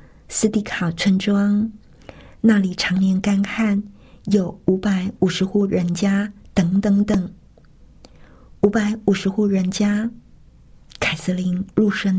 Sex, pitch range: female, 195-215 Hz